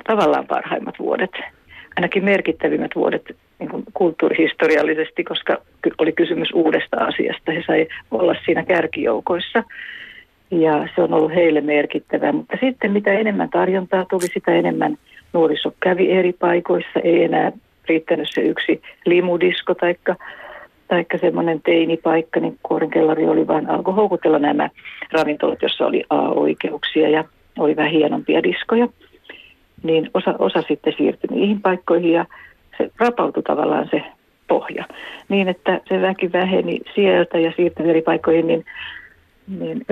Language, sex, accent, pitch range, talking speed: Finnish, female, native, 160-200 Hz, 135 wpm